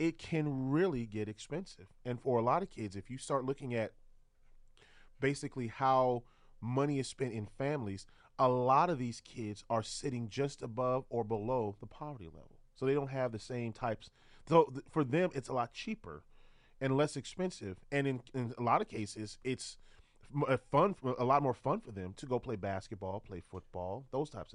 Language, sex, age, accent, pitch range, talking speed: English, male, 30-49, American, 110-140 Hz, 195 wpm